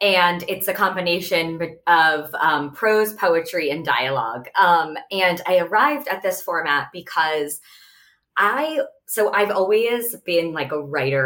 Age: 20-39